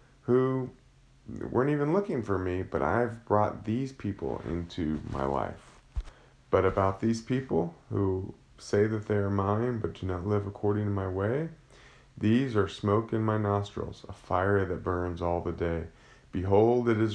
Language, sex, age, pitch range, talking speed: English, male, 30-49, 95-115 Hz, 170 wpm